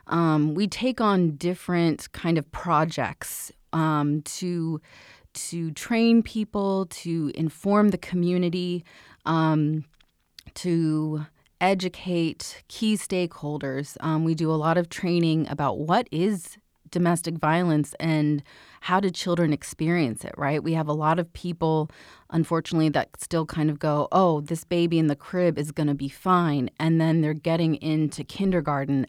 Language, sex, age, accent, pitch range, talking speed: English, female, 30-49, American, 150-170 Hz, 145 wpm